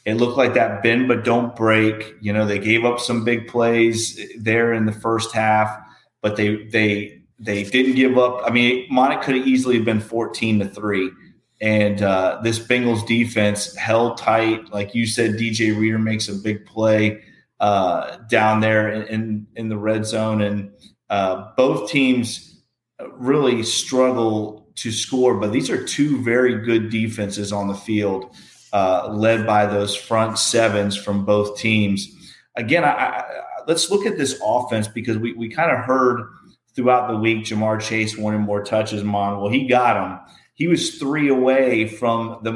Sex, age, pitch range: male, 30-49, 105-125 Hz